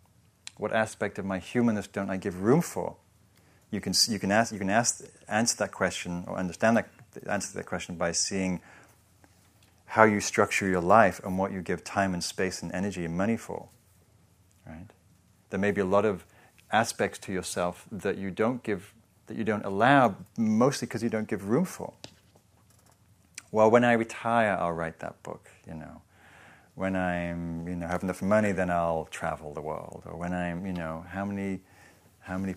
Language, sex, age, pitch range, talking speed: English, male, 30-49, 90-105 Hz, 190 wpm